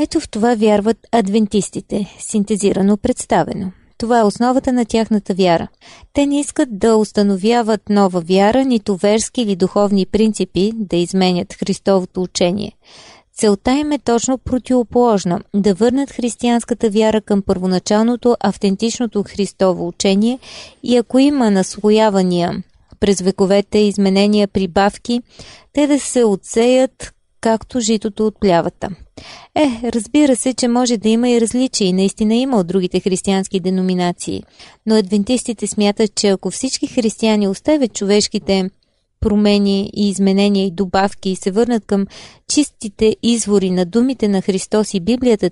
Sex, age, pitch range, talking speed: female, 20-39, 195-235 Hz, 130 wpm